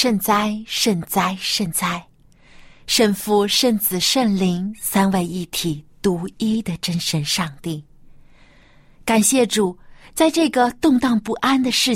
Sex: female